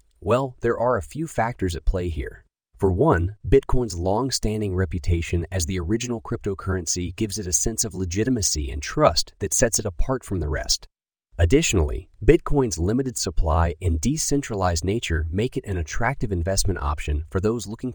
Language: English